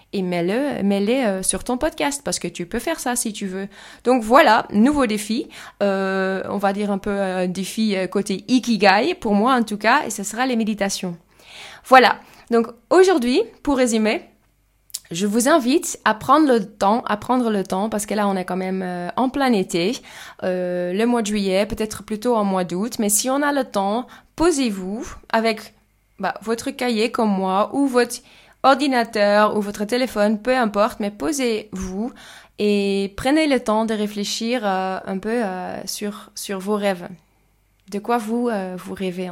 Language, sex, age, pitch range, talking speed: French, female, 20-39, 195-245 Hz, 185 wpm